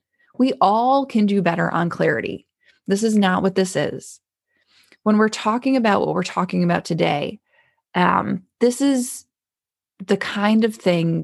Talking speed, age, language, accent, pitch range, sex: 155 wpm, 20-39, English, American, 180-250 Hz, female